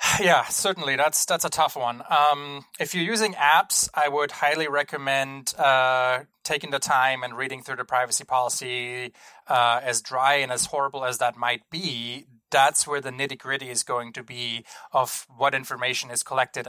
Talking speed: 175 wpm